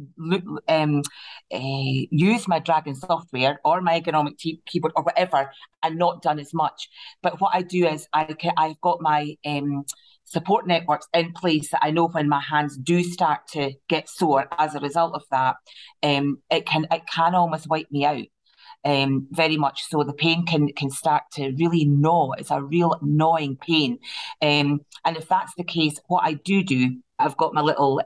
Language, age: English, 40-59